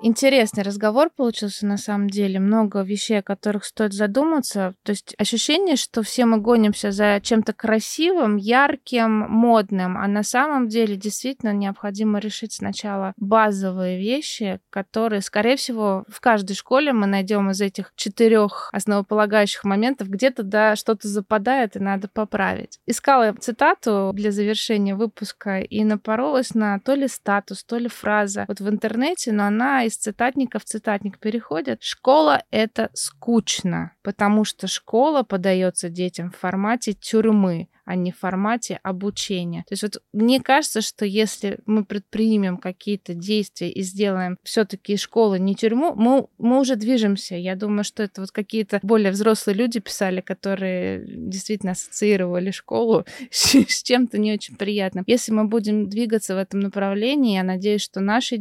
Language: Russian